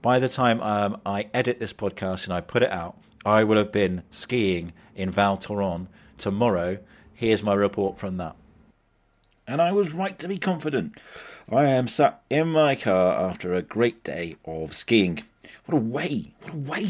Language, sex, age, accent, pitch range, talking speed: English, male, 40-59, British, 85-115 Hz, 185 wpm